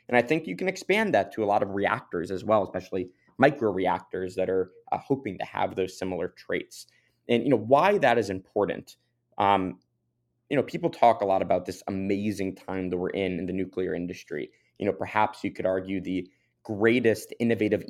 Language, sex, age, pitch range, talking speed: English, male, 20-39, 95-120 Hz, 200 wpm